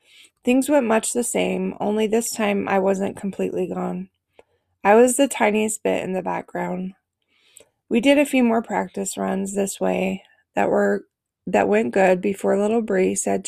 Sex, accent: female, American